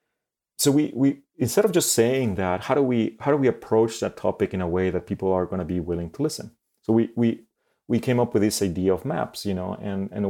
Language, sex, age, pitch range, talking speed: English, male, 30-49, 90-115 Hz, 255 wpm